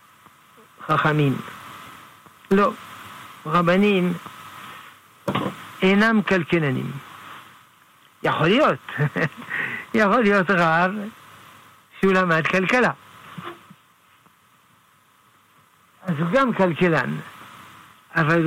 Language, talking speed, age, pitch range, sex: Hebrew, 55 wpm, 60-79, 160-190 Hz, male